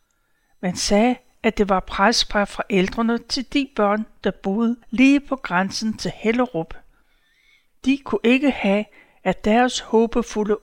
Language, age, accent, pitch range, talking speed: Danish, 60-79, native, 205-255 Hz, 140 wpm